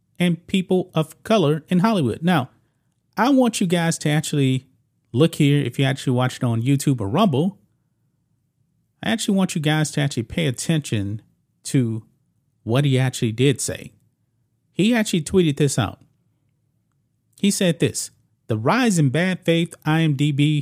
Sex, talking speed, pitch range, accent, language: male, 150 wpm, 125-165 Hz, American, English